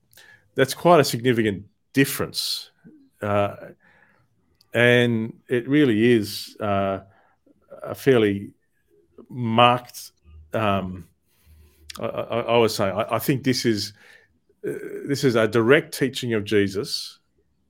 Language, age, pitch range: English, 40-59, 100-120 Hz